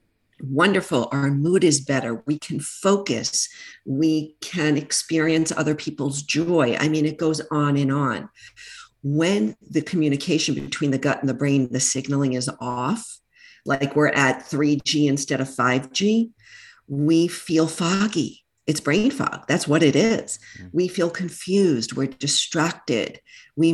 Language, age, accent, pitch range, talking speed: English, 50-69, American, 135-165 Hz, 140 wpm